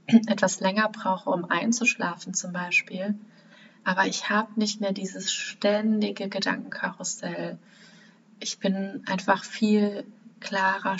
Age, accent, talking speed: 30-49, German, 110 wpm